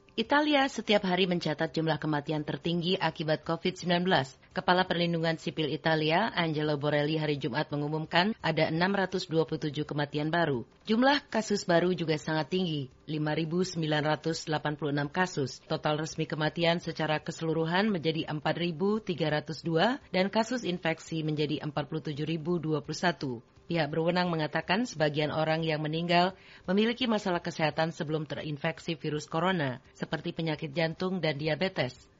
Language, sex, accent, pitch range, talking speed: Indonesian, female, native, 155-175 Hz, 115 wpm